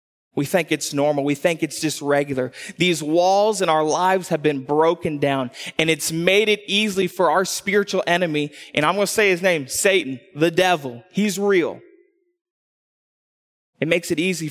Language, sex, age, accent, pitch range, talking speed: English, male, 20-39, American, 135-185 Hz, 180 wpm